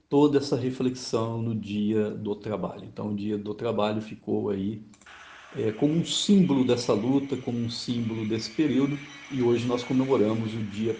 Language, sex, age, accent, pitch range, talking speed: Portuguese, male, 50-69, Brazilian, 115-140 Hz, 165 wpm